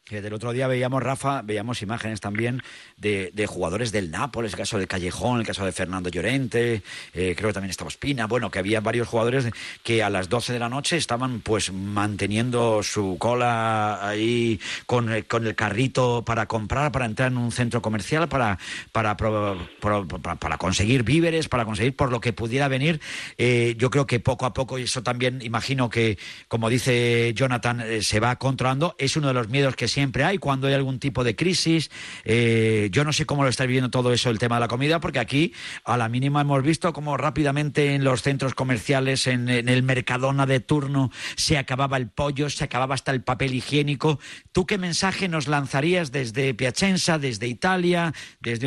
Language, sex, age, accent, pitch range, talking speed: Indonesian, male, 50-69, Spanish, 115-140 Hz, 200 wpm